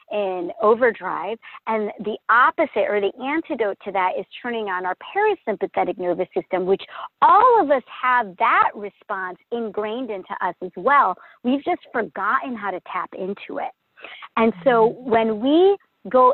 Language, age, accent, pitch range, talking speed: English, 40-59, American, 190-255 Hz, 155 wpm